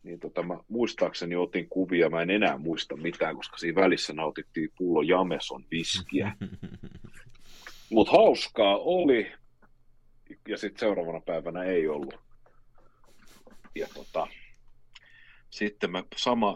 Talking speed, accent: 115 wpm, native